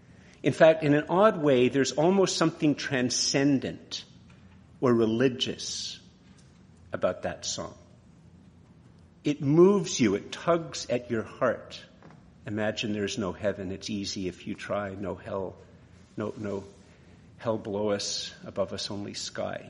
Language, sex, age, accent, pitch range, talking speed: English, male, 50-69, American, 100-140 Hz, 130 wpm